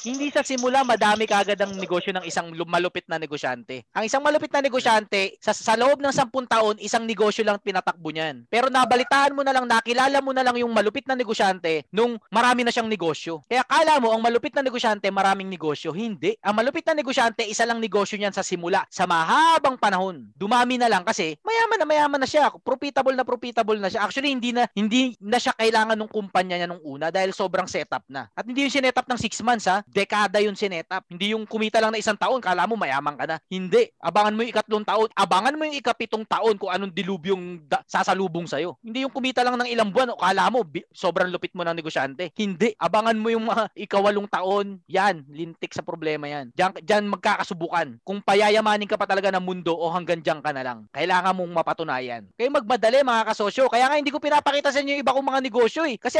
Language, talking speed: Filipino, 210 wpm